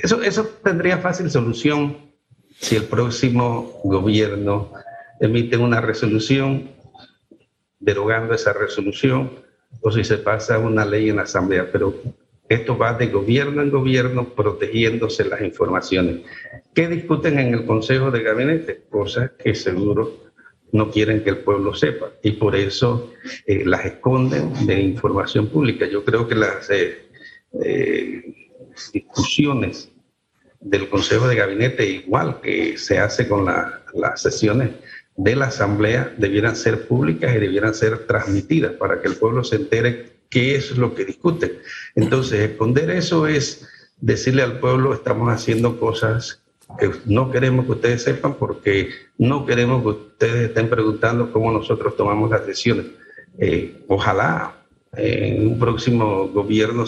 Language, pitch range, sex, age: Spanish, 110-135 Hz, male, 50-69